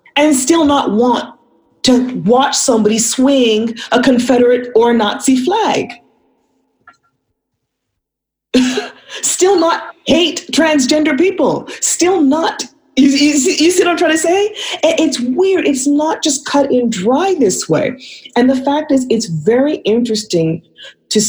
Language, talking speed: English, 140 wpm